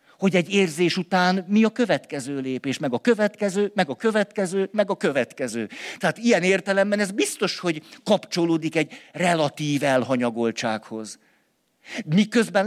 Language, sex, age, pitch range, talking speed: Hungarian, male, 50-69, 155-205 Hz, 135 wpm